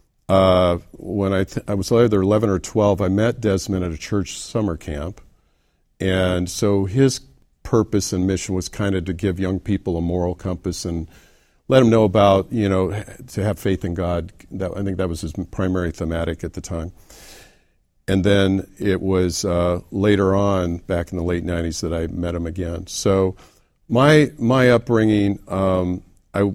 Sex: male